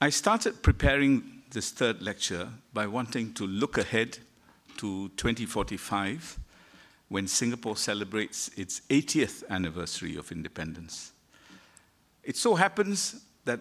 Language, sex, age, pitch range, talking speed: English, male, 50-69, 95-145 Hz, 110 wpm